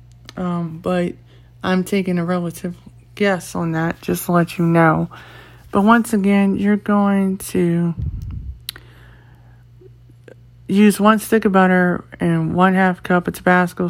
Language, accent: English, American